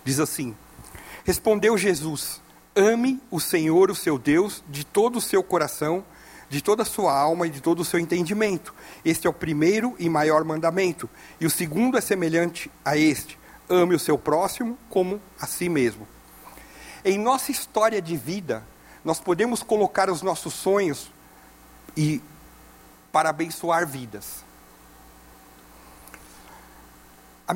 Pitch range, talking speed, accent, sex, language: 135-200 Hz, 135 wpm, Brazilian, male, Portuguese